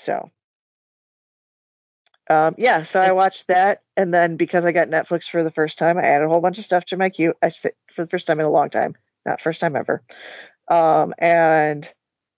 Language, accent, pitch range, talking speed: English, American, 165-210 Hz, 200 wpm